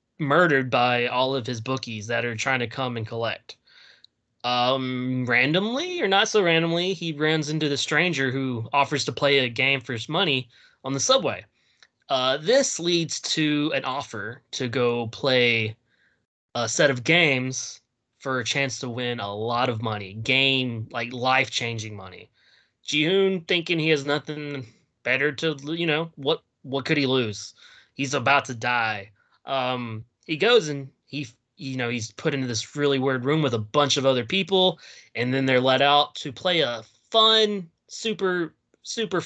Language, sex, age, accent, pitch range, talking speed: English, male, 20-39, American, 120-155 Hz, 170 wpm